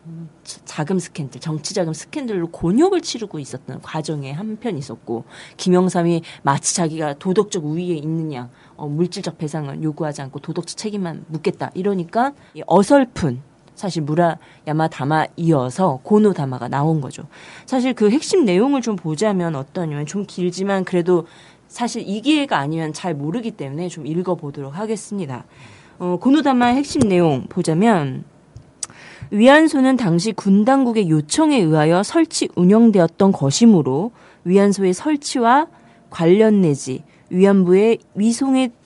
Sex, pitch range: female, 155-220 Hz